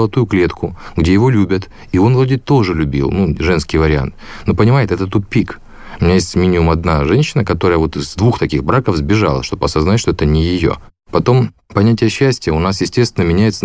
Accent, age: native, 30-49